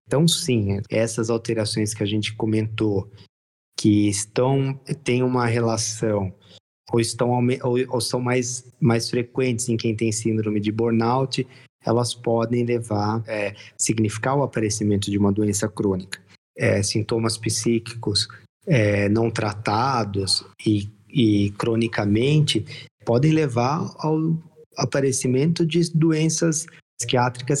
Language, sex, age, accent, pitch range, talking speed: Portuguese, male, 20-39, Brazilian, 105-130 Hz, 115 wpm